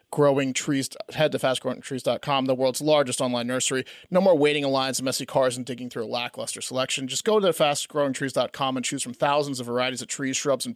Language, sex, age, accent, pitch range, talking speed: English, male, 30-49, American, 130-150 Hz, 210 wpm